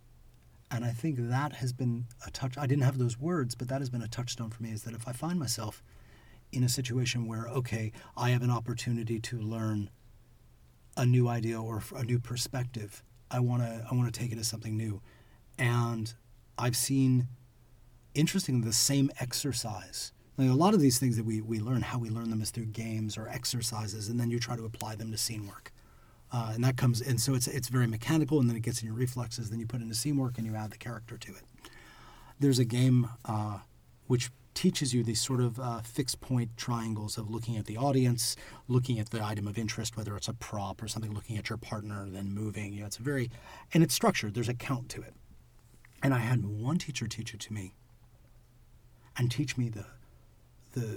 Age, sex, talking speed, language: 30-49, male, 220 wpm, English